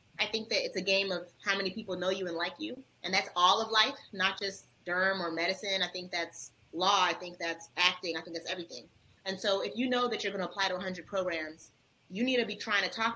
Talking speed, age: 260 wpm, 30-49